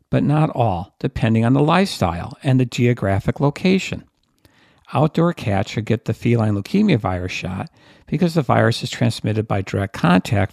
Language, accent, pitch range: English, American, 105-140 Hz